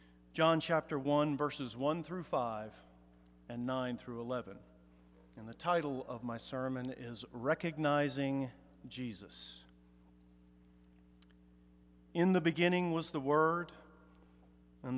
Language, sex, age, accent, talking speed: English, male, 50-69, American, 110 wpm